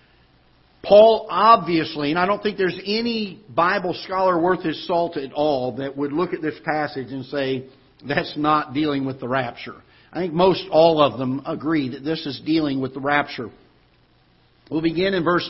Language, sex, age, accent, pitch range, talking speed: English, male, 50-69, American, 145-175 Hz, 180 wpm